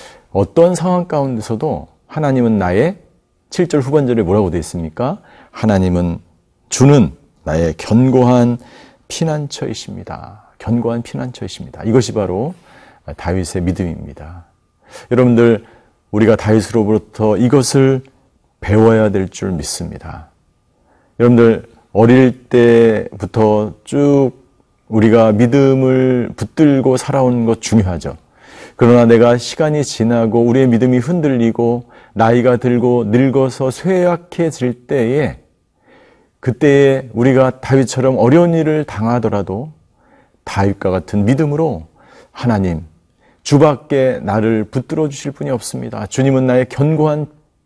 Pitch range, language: 105-135 Hz, Korean